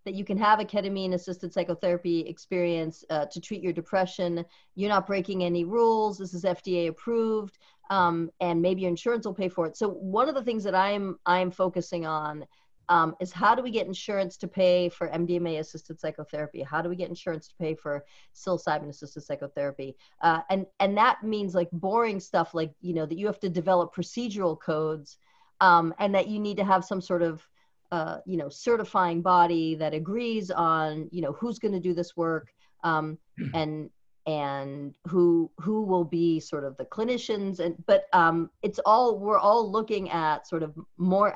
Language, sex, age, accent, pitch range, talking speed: English, female, 40-59, American, 160-195 Hz, 190 wpm